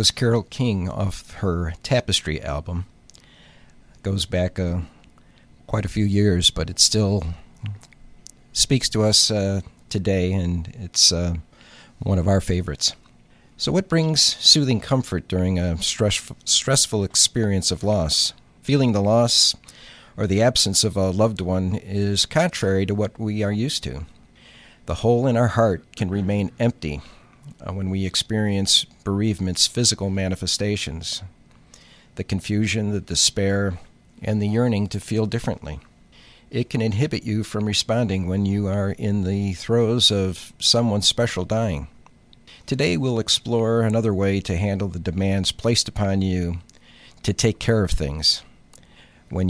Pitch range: 90-110 Hz